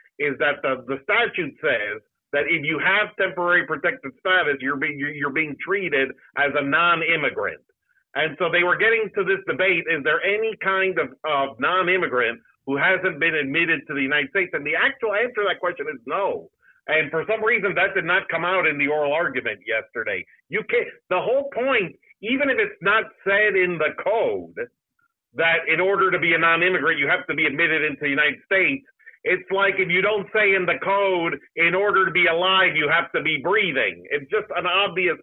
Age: 50-69